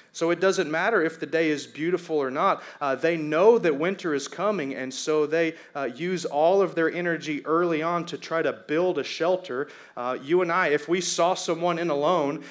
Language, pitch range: English, 150-210 Hz